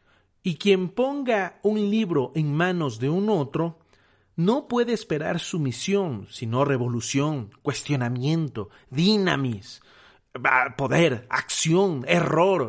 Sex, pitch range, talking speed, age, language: male, 120-180 Hz, 100 wpm, 40-59, Spanish